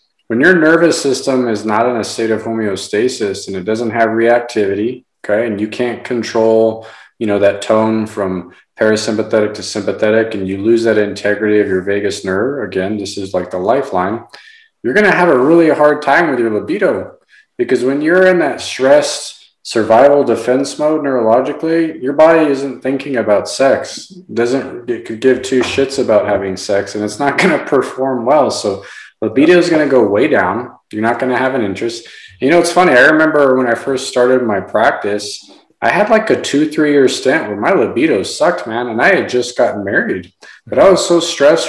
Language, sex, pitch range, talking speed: English, male, 110-150 Hz, 200 wpm